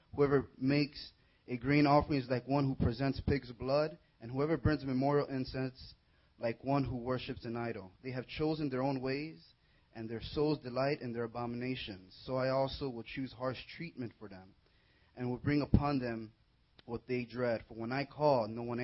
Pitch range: 110-145 Hz